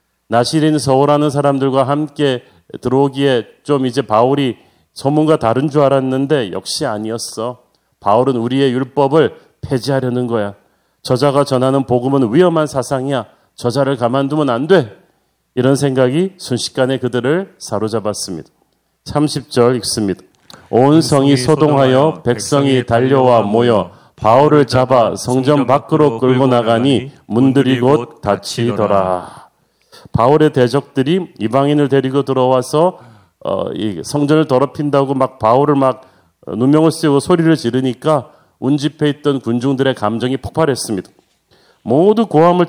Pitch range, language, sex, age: 120-150 Hz, Korean, male, 40-59